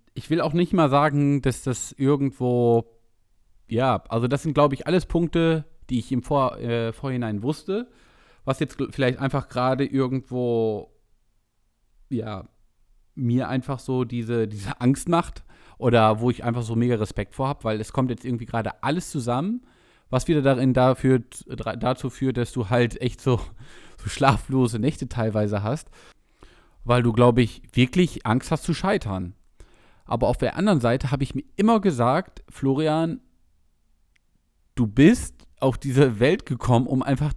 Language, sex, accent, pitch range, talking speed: German, male, German, 115-150 Hz, 160 wpm